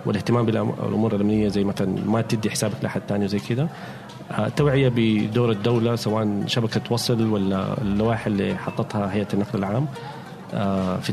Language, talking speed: Arabic, 155 wpm